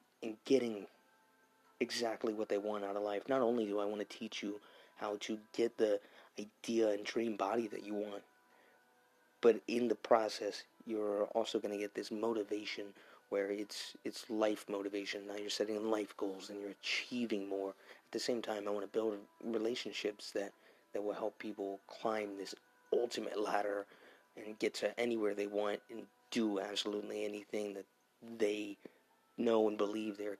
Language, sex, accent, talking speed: English, male, American, 170 wpm